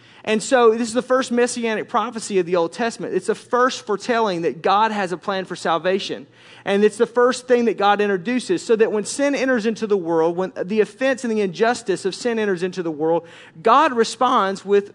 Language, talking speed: English, 215 wpm